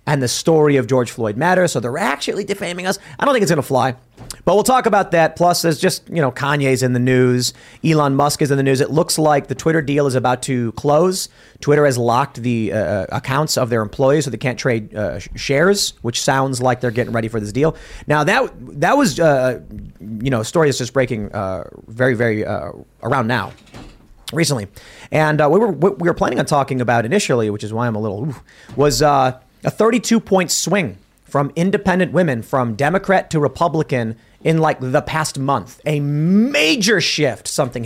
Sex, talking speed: male, 210 wpm